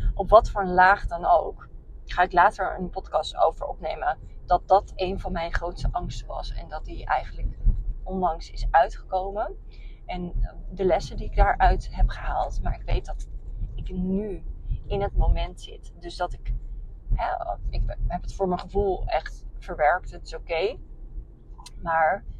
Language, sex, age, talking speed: Dutch, female, 30-49, 165 wpm